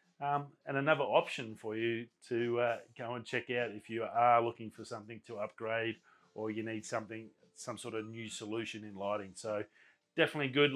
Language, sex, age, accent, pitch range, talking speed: English, male, 30-49, Australian, 115-140 Hz, 190 wpm